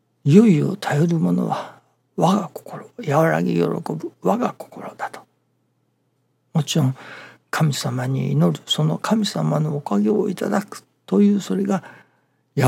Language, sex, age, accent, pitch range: Japanese, male, 60-79, native, 130-190 Hz